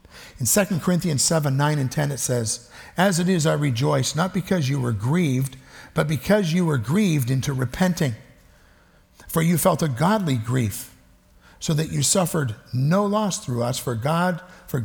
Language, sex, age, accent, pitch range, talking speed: English, male, 50-69, American, 125-170 Hz, 175 wpm